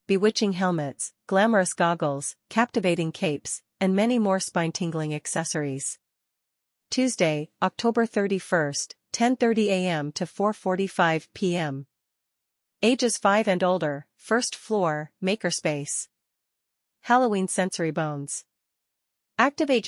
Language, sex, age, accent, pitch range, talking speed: English, female, 40-59, American, 160-205 Hz, 90 wpm